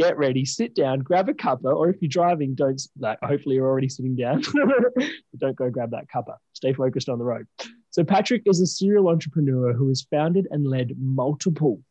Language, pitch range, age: English, 125-160 Hz, 20-39